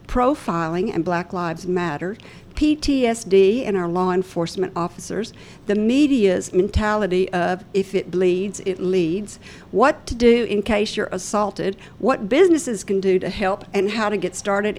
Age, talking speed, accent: 60-79, 155 wpm, American